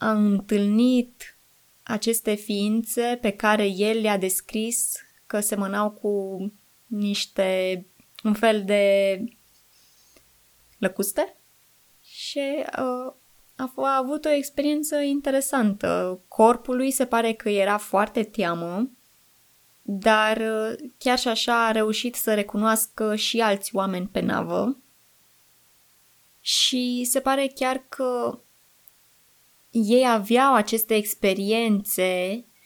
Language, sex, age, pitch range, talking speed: Romanian, female, 20-39, 205-240 Hz, 105 wpm